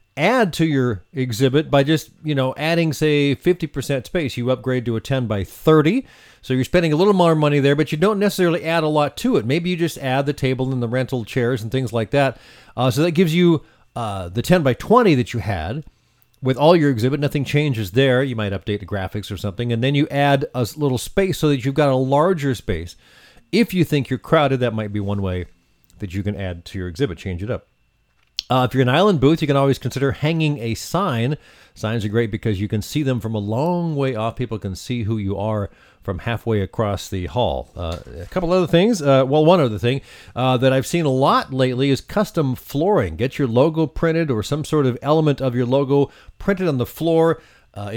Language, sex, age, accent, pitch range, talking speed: English, male, 40-59, American, 115-155 Hz, 230 wpm